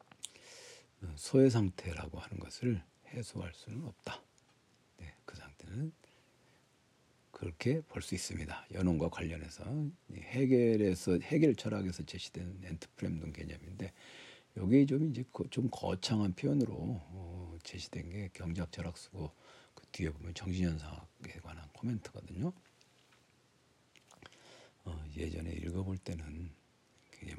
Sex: male